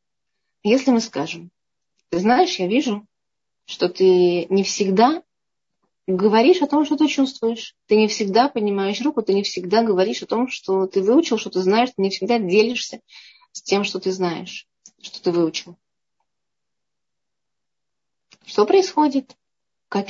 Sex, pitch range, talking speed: female, 180-225 Hz, 145 wpm